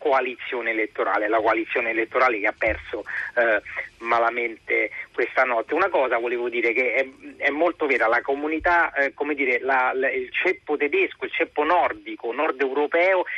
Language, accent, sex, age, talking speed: Italian, native, male, 40-59, 160 wpm